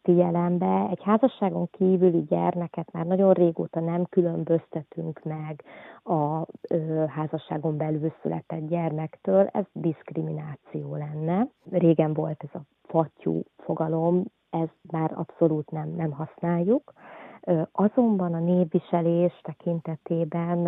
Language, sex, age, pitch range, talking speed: Hungarian, female, 30-49, 160-185 Hz, 105 wpm